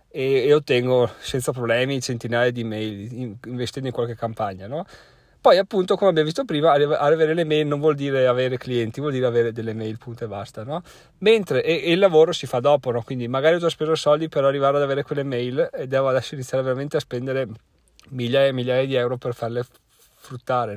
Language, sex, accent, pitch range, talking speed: Italian, male, native, 125-170 Hz, 205 wpm